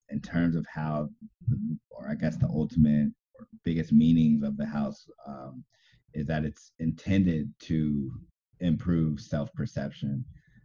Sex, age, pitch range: male, 30-49, 75-100 Hz